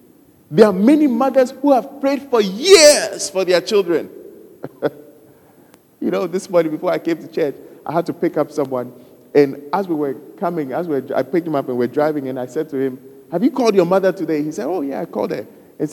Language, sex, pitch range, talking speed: English, male, 140-205 Hz, 235 wpm